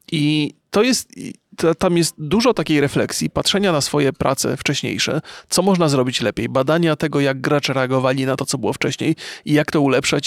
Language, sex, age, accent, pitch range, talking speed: Polish, male, 30-49, native, 140-170 Hz, 185 wpm